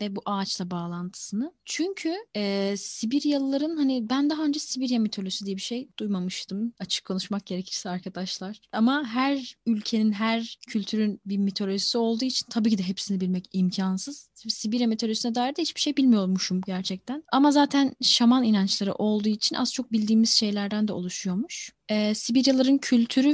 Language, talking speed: Turkish, 145 wpm